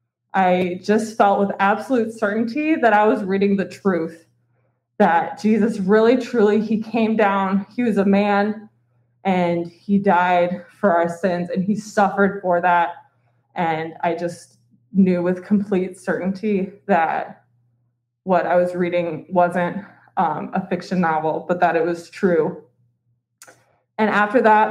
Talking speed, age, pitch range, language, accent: 145 wpm, 20-39, 180-235 Hz, English, American